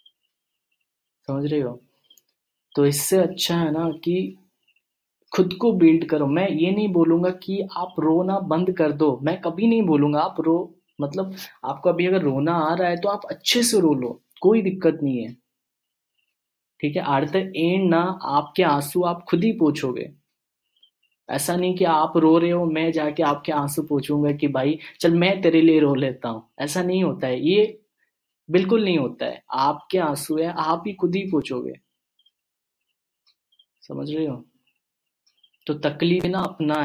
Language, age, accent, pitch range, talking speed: Hindi, 20-39, native, 140-175 Hz, 170 wpm